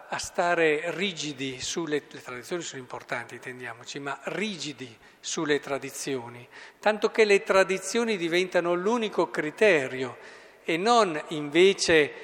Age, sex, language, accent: 50-69, male, Italian, native